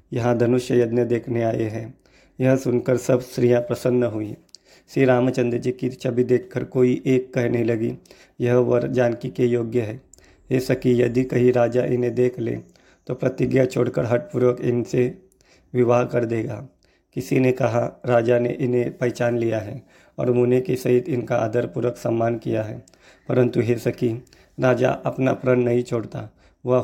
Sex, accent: male, native